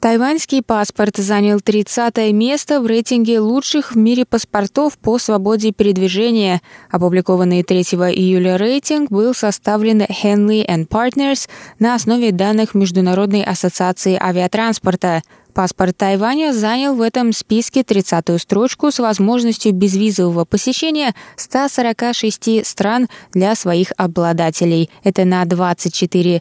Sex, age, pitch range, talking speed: female, 20-39, 185-235 Hz, 115 wpm